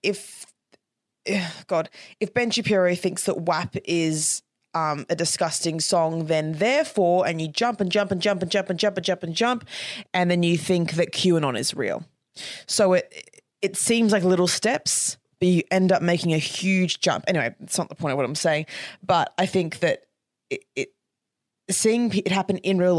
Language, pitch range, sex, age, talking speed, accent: English, 160-195 Hz, female, 20-39, 195 wpm, Australian